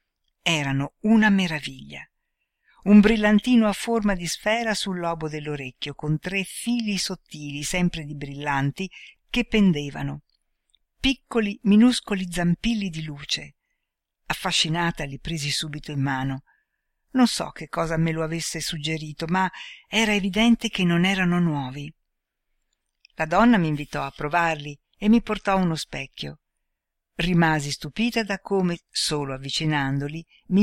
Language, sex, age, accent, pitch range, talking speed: Italian, female, 60-79, native, 145-210 Hz, 125 wpm